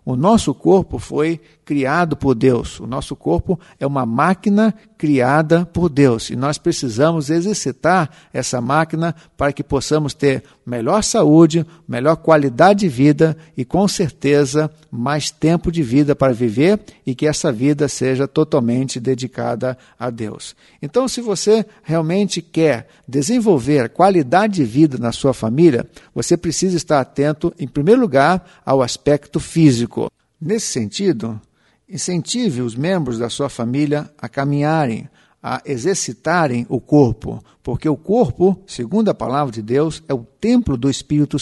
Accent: Brazilian